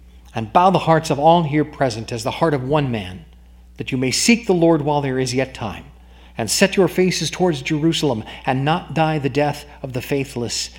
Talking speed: 215 wpm